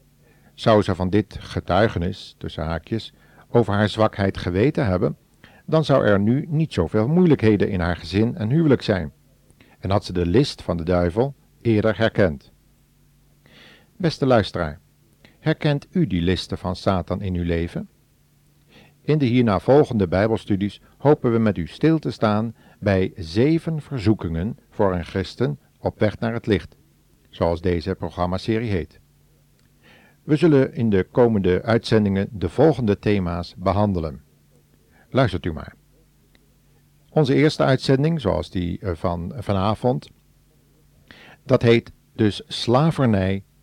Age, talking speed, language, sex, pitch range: 50-69, 135 wpm, Dutch, male, 90-125 Hz